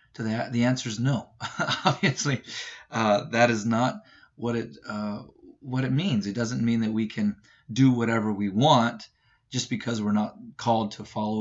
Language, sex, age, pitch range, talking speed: English, male, 30-49, 110-130 Hz, 160 wpm